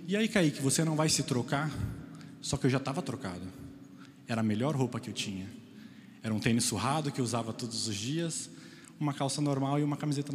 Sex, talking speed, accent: male, 215 wpm, Brazilian